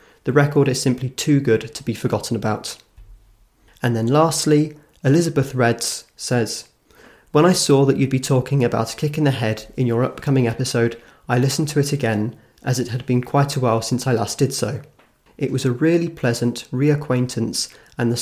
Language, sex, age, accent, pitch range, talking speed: English, male, 30-49, British, 115-140 Hz, 190 wpm